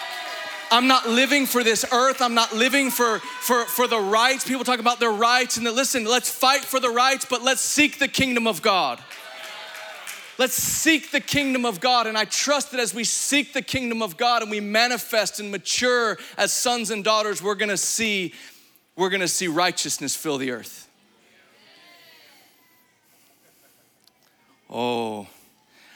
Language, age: English, 30-49